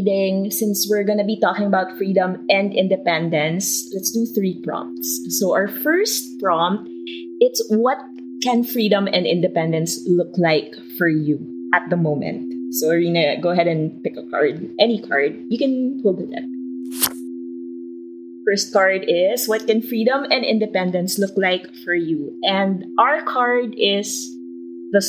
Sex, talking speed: female, 150 wpm